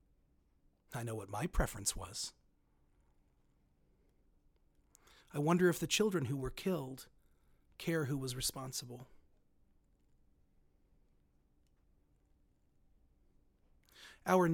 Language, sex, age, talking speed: English, male, 40-59, 80 wpm